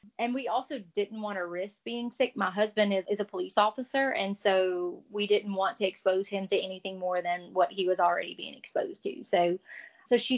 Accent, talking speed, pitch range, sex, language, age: American, 220 wpm, 195-235 Hz, female, English, 30-49